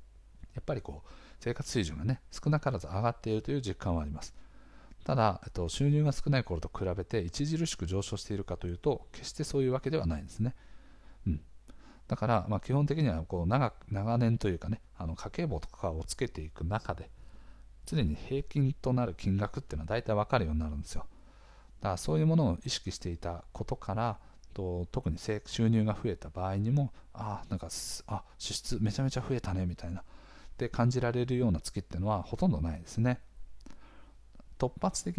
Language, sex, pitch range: Japanese, male, 90-120 Hz